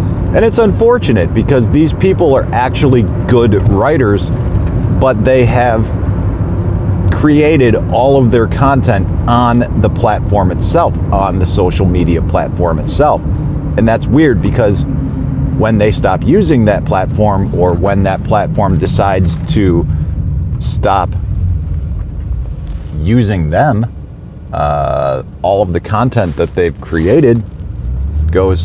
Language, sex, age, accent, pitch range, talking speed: English, male, 40-59, American, 80-105 Hz, 115 wpm